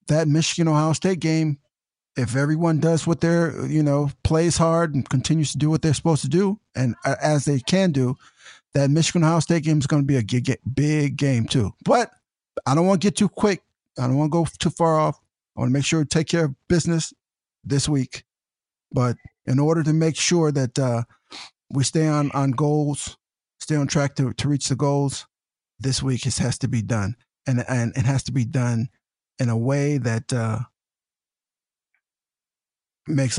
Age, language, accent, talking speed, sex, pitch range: 50-69, English, American, 195 wpm, male, 125-160 Hz